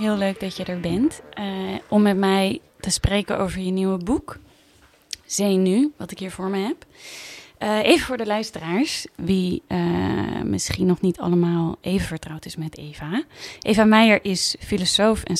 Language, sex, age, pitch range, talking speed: Dutch, female, 20-39, 180-215 Hz, 175 wpm